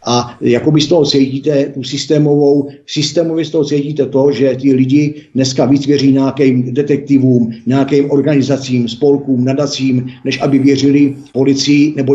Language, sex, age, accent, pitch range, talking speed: Czech, male, 50-69, native, 120-140 Hz, 130 wpm